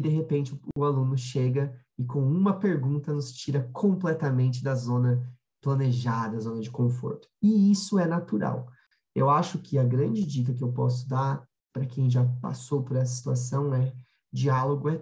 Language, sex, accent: Portuguese, male, Brazilian